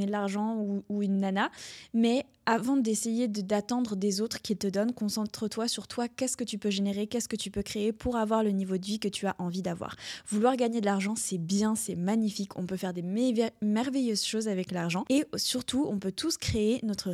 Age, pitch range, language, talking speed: 20-39, 200-235 Hz, French, 220 wpm